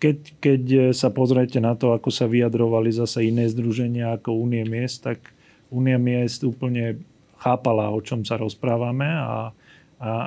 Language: Slovak